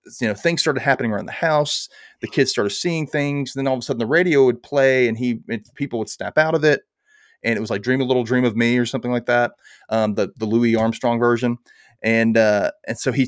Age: 30-49